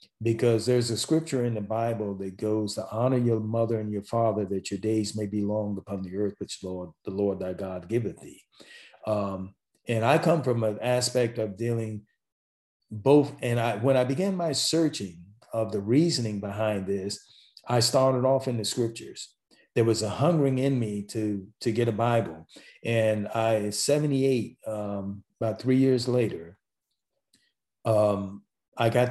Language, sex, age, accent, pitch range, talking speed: English, male, 50-69, American, 105-135 Hz, 170 wpm